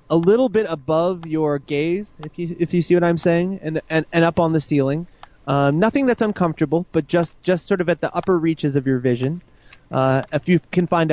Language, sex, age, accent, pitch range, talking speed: English, male, 20-39, American, 135-160 Hz, 225 wpm